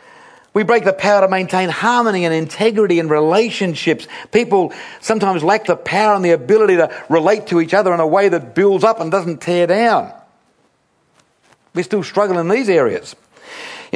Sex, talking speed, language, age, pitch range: male, 175 wpm, English, 50-69, 125-190 Hz